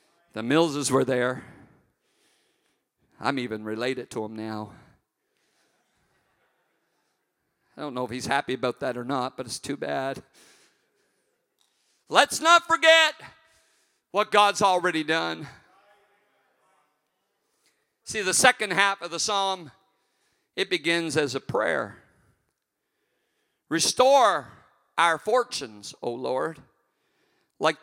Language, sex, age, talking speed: English, male, 50-69, 105 wpm